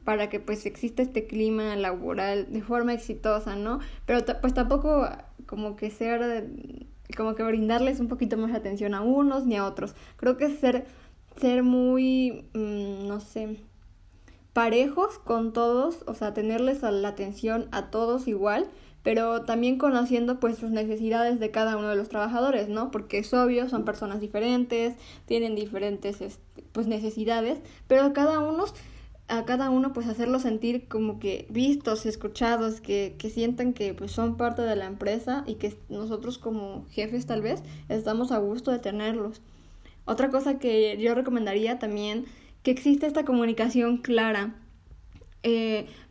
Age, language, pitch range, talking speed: 20-39, English, 215-250 Hz, 160 wpm